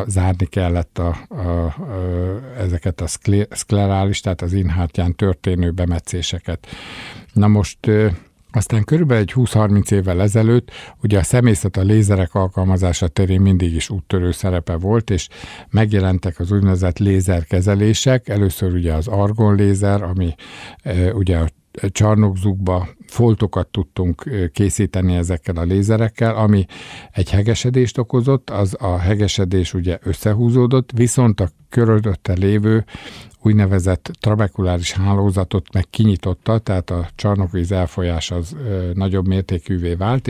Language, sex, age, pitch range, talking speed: Hungarian, male, 50-69, 90-105 Hz, 120 wpm